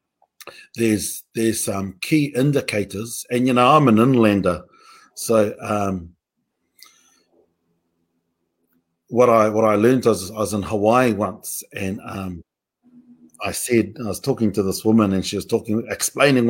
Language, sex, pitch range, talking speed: English, male, 100-130 Hz, 145 wpm